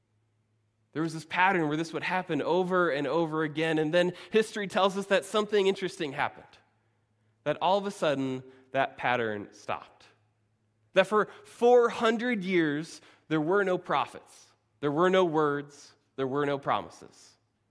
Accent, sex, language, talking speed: American, male, English, 155 wpm